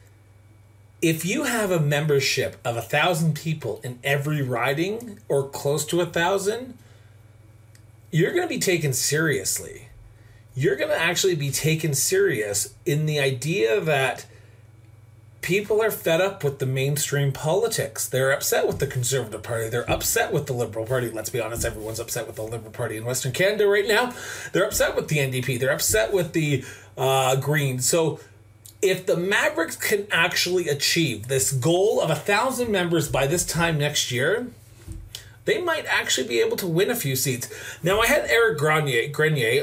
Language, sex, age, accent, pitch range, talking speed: English, male, 30-49, American, 115-165 Hz, 170 wpm